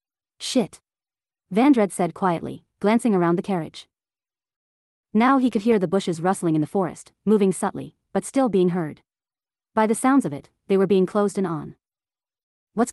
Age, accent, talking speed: 30-49, American, 165 wpm